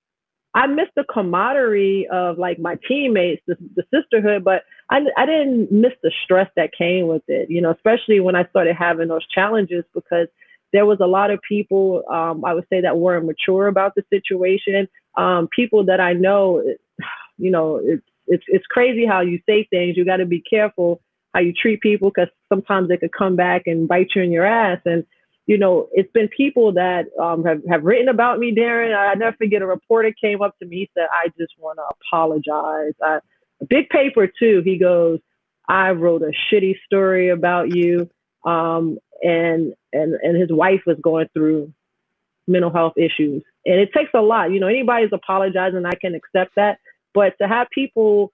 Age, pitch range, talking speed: 30-49, 175-210 Hz, 195 wpm